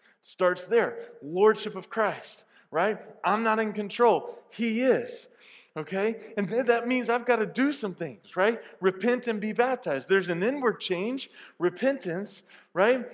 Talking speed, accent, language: 155 wpm, American, English